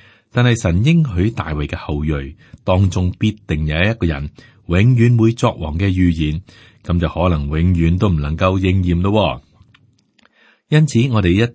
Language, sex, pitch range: Chinese, male, 85-110 Hz